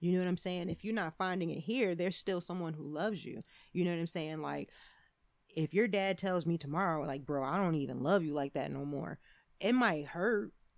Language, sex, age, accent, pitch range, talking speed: English, female, 20-39, American, 165-200 Hz, 240 wpm